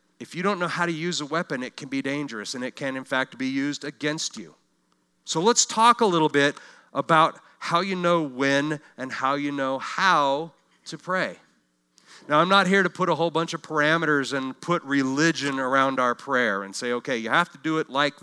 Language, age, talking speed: English, 40-59, 215 wpm